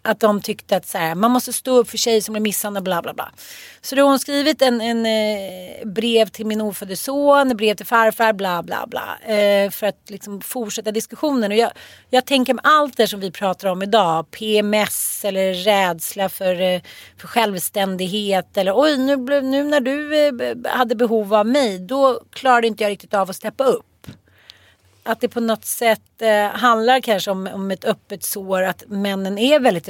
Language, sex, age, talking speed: Swedish, female, 30-49, 195 wpm